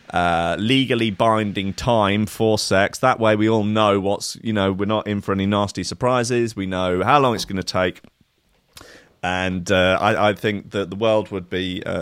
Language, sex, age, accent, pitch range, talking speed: English, male, 30-49, British, 100-135 Hz, 200 wpm